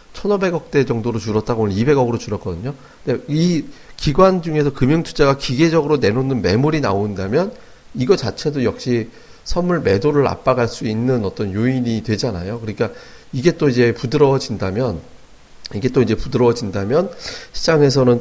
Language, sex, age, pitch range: Korean, male, 40-59, 105-140 Hz